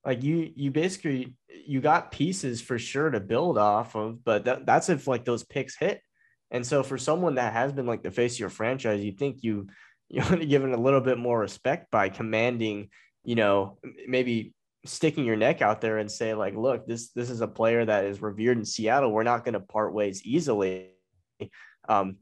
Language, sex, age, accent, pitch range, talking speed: English, male, 20-39, American, 100-130 Hz, 215 wpm